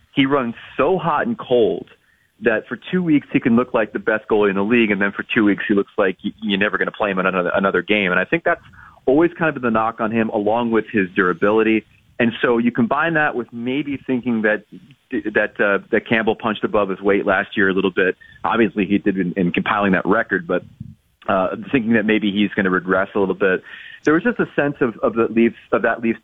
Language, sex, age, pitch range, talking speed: English, male, 30-49, 100-120 Hz, 245 wpm